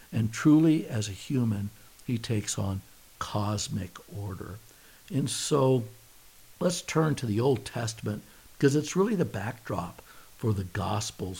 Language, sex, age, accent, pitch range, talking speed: English, male, 60-79, American, 105-135 Hz, 135 wpm